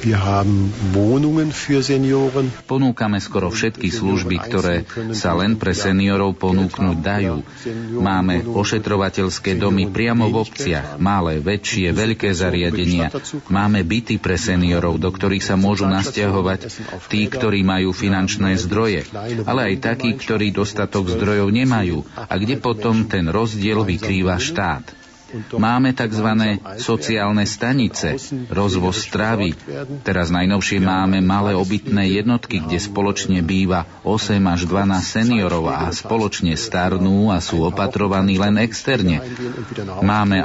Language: Slovak